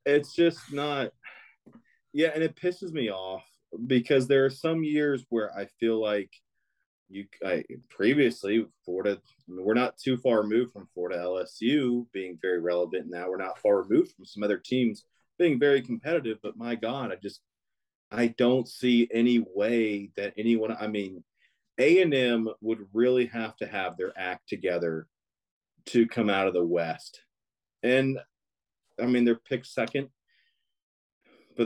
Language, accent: English, American